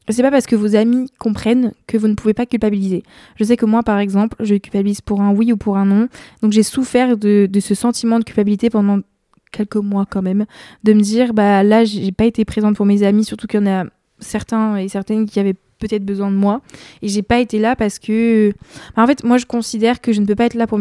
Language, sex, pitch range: French, female, 200-230 Hz